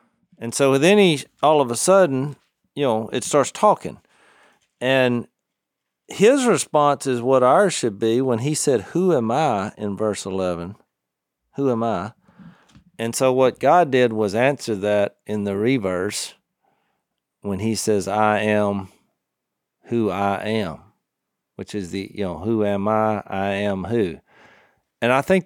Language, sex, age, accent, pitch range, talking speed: English, male, 40-59, American, 105-155 Hz, 155 wpm